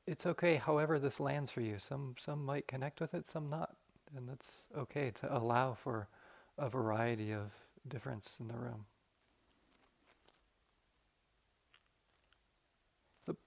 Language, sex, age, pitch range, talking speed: English, male, 40-59, 115-145 Hz, 130 wpm